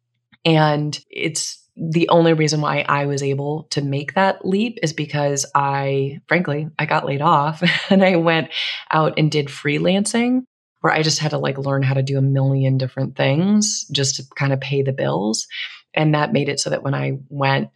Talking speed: 195 wpm